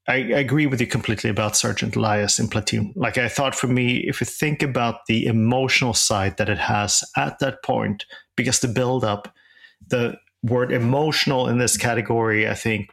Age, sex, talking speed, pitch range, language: 40-59, male, 185 wpm, 105-125 Hz, English